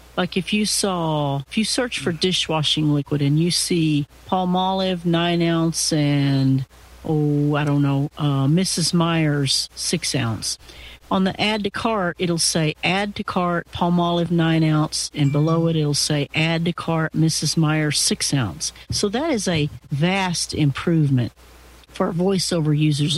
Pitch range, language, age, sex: 145-185 Hz, English, 50-69, female